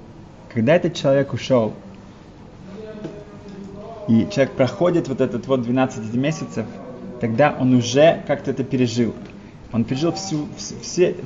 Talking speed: 110 wpm